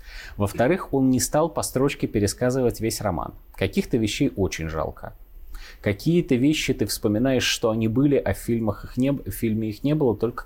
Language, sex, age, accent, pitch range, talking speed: Russian, male, 30-49, native, 100-140 Hz, 160 wpm